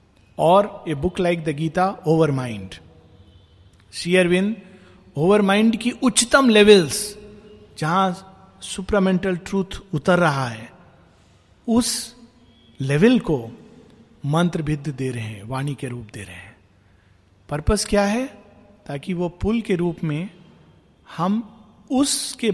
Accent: native